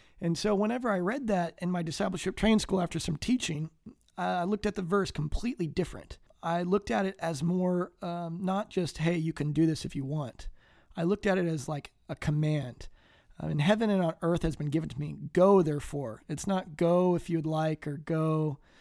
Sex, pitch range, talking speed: male, 150-180 Hz, 210 wpm